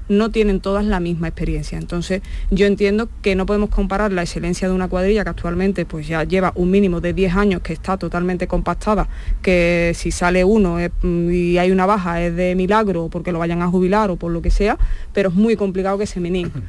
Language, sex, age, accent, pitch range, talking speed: Spanish, female, 20-39, Spanish, 185-210 Hz, 210 wpm